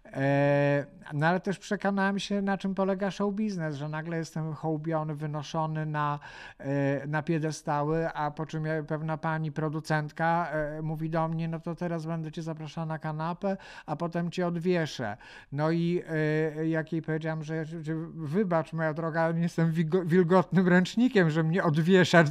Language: Polish